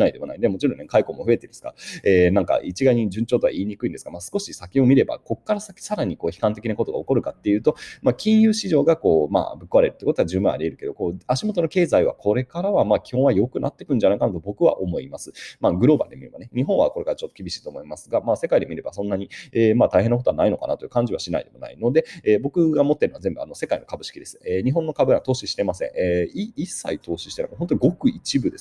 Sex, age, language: male, 30-49, Japanese